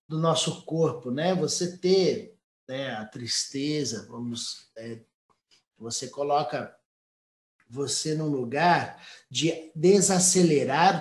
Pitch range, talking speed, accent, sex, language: 140-180 Hz, 100 wpm, Brazilian, male, Portuguese